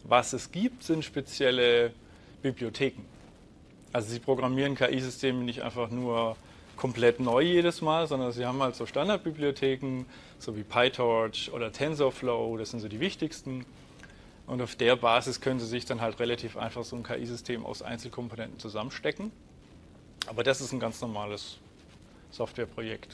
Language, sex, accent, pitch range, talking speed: German, male, German, 115-135 Hz, 150 wpm